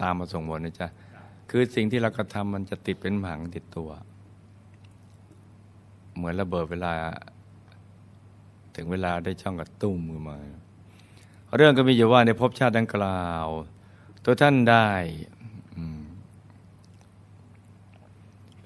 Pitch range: 95-105 Hz